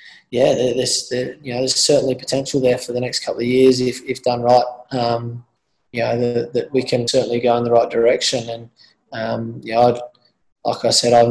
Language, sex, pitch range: English, male, 115-125 Hz